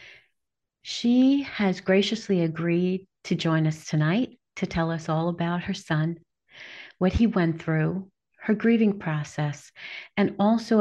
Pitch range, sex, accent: 155-205 Hz, female, American